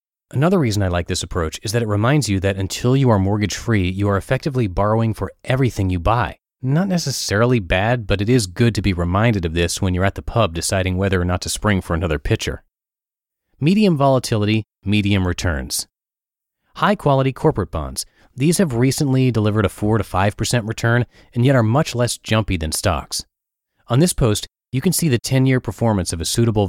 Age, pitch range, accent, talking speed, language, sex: 30-49, 95-125 Hz, American, 195 wpm, English, male